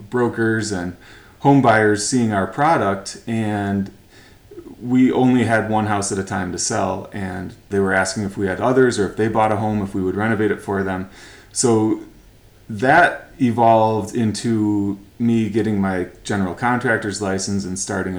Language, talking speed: English, 170 wpm